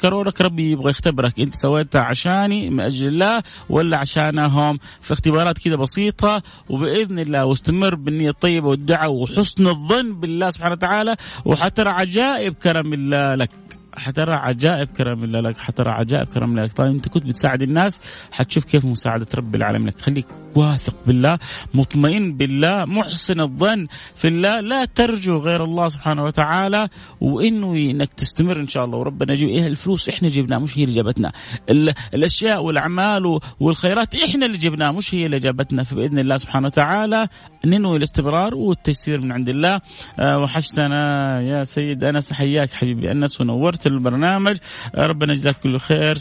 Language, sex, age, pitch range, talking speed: Arabic, male, 30-49, 135-180 Hz, 155 wpm